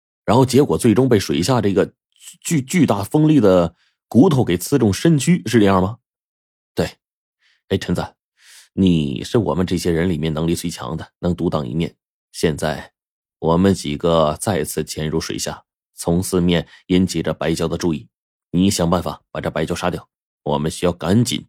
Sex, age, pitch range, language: male, 30-49, 85-120 Hz, Chinese